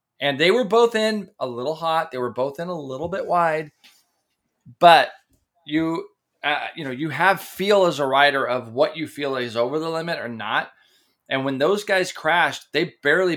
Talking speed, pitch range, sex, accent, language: 195 wpm, 115-150 Hz, male, American, English